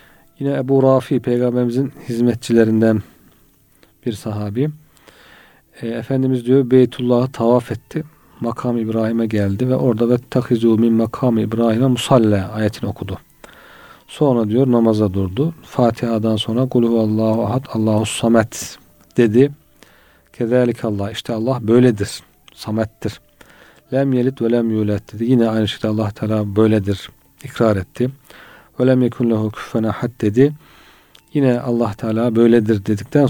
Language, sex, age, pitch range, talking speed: Turkish, male, 40-59, 110-130 Hz, 120 wpm